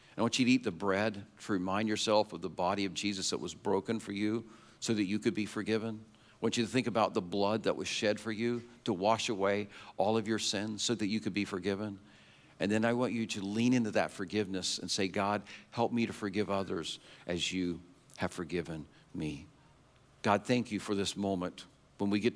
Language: English